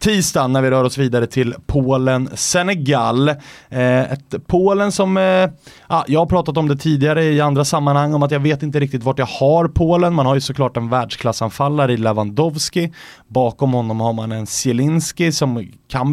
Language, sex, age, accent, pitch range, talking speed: English, male, 20-39, Swedish, 120-150 Hz, 175 wpm